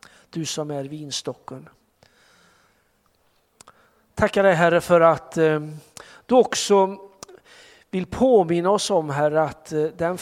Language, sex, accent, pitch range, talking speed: Swedish, male, native, 140-175 Hz, 105 wpm